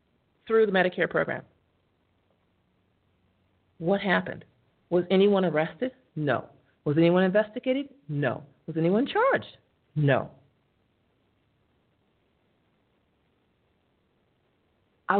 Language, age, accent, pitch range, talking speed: English, 50-69, American, 140-225 Hz, 75 wpm